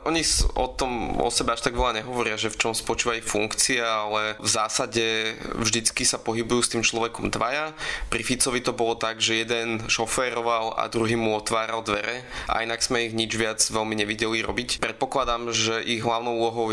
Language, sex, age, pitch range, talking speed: Slovak, male, 20-39, 105-115 Hz, 185 wpm